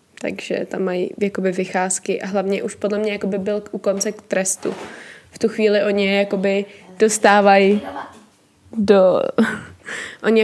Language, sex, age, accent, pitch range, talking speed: Czech, female, 20-39, native, 200-220 Hz, 130 wpm